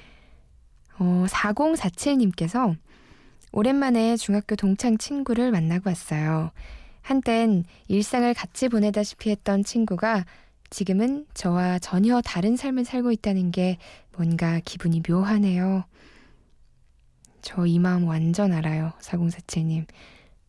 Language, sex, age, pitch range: Korean, female, 20-39, 170-210 Hz